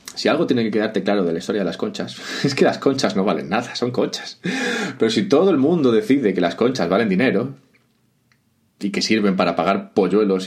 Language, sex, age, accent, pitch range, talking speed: Spanish, male, 30-49, Spanish, 95-120 Hz, 220 wpm